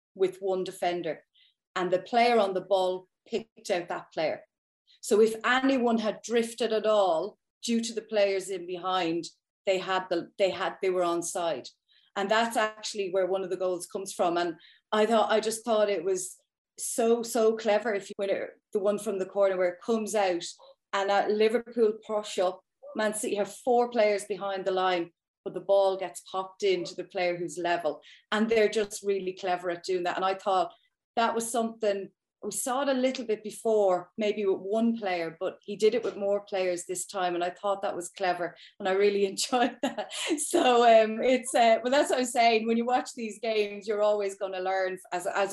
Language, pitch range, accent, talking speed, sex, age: English, 185-225 Hz, Irish, 205 wpm, female, 30-49